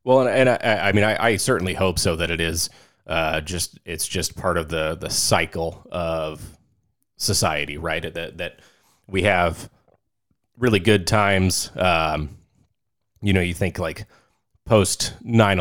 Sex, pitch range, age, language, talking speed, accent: male, 85-105 Hz, 30-49, English, 155 wpm, American